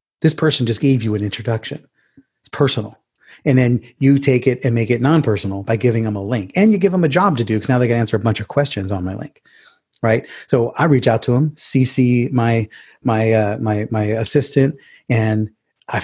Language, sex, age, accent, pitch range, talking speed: English, male, 30-49, American, 110-135 Hz, 220 wpm